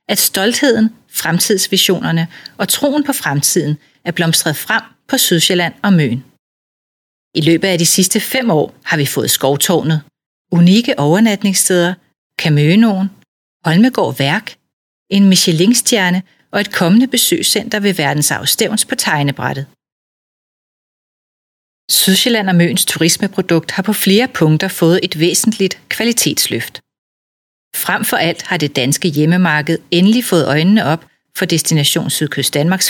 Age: 40-59